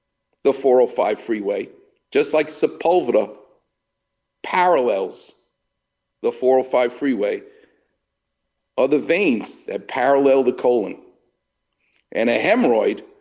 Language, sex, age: English, male, 50-69